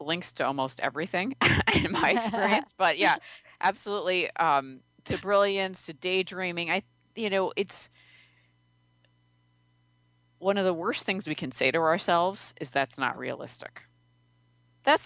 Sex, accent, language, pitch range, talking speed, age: female, American, English, 130-185 Hz, 135 wpm, 40-59